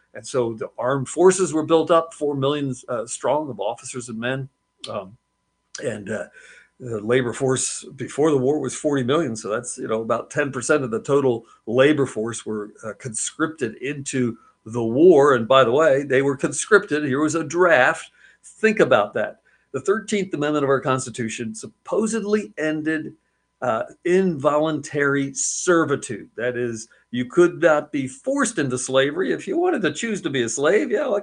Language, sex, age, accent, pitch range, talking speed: English, male, 50-69, American, 125-170 Hz, 175 wpm